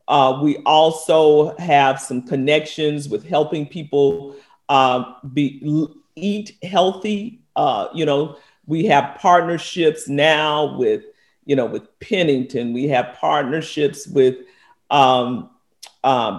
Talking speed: 110 wpm